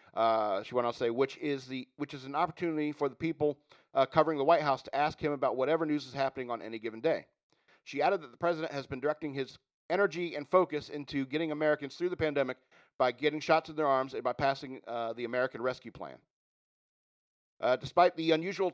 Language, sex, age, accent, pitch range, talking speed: English, male, 40-59, American, 130-160 Hz, 220 wpm